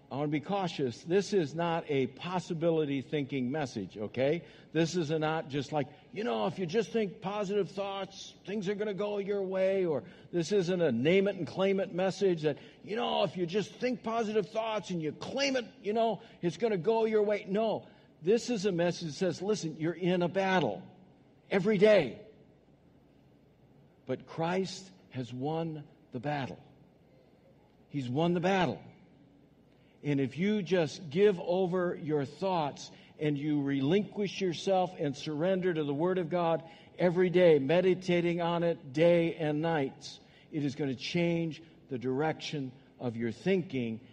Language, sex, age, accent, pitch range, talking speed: English, male, 60-79, American, 140-190 Hz, 170 wpm